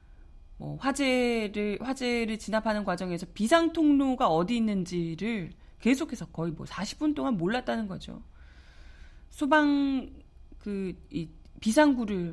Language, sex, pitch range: Korean, female, 170-235 Hz